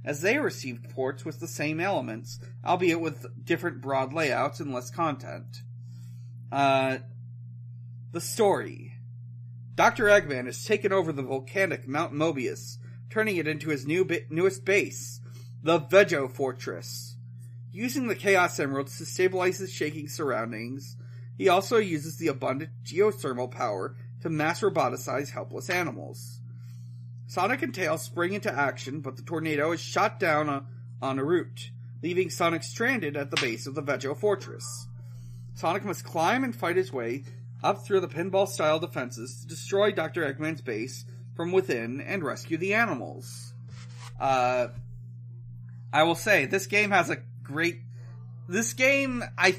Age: 40-59